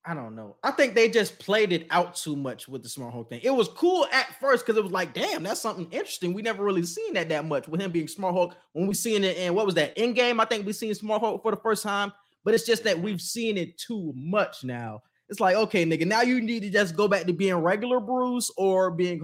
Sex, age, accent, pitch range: male, 20-39, American, 160-205 Hz